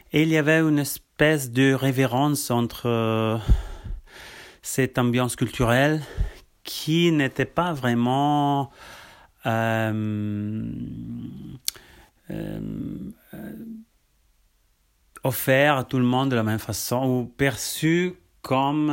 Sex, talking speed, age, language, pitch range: male, 100 wpm, 30-49, Italian, 115-155 Hz